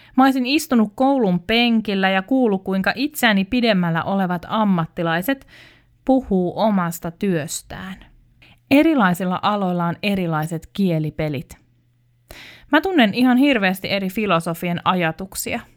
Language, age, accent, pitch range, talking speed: Finnish, 30-49, native, 170-225 Hz, 95 wpm